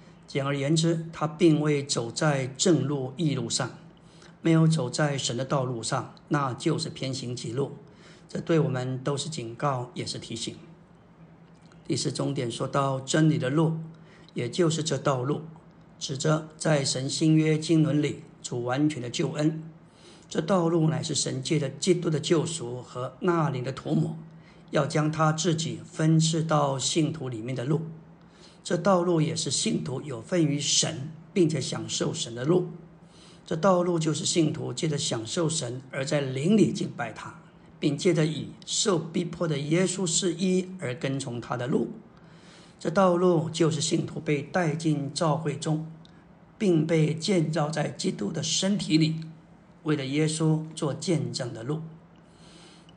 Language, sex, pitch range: Chinese, male, 145-170 Hz